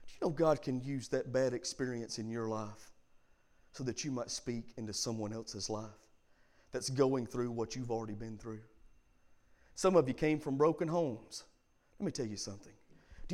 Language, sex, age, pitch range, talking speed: English, male, 40-59, 110-155 Hz, 180 wpm